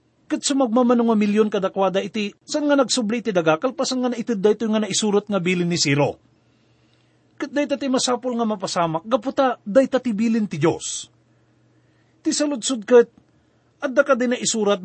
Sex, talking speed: male, 155 wpm